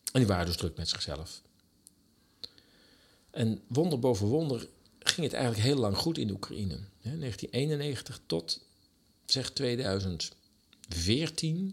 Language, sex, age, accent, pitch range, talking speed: Dutch, male, 50-69, Dutch, 85-110 Hz, 125 wpm